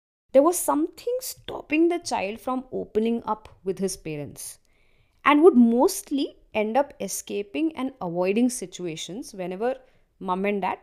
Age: 20-39